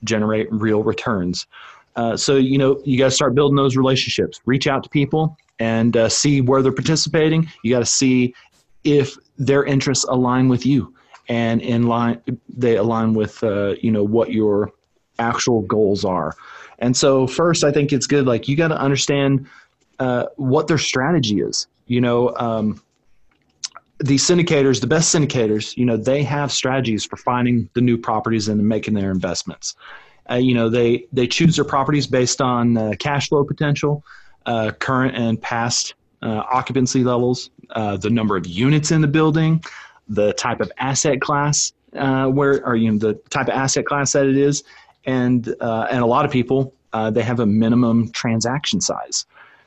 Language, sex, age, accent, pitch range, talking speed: English, male, 30-49, American, 115-140 Hz, 180 wpm